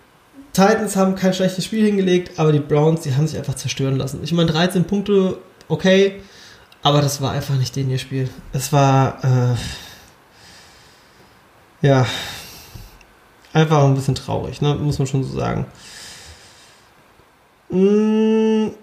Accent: German